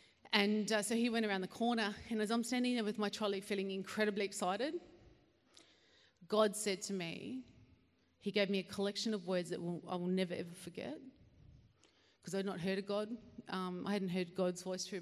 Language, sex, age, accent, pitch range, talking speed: English, female, 40-59, Australian, 180-235 Hz, 200 wpm